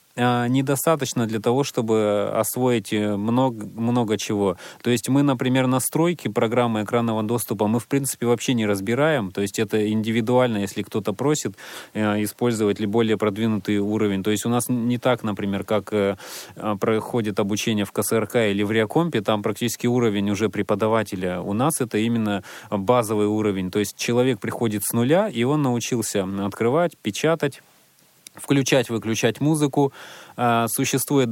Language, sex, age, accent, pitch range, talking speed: Russian, male, 30-49, native, 105-125 Hz, 145 wpm